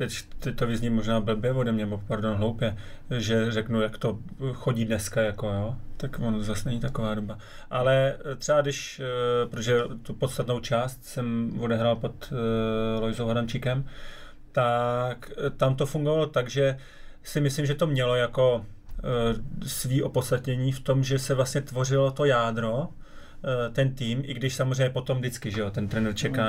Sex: male